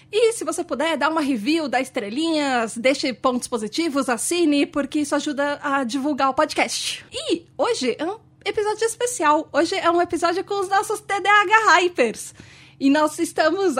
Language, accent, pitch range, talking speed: Portuguese, Brazilian, 270-370 Hz, 165 wpm